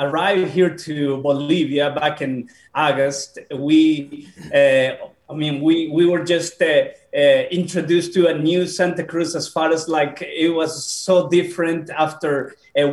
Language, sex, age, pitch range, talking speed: English, male, 30-49, 160-180 Hz, 155 wpm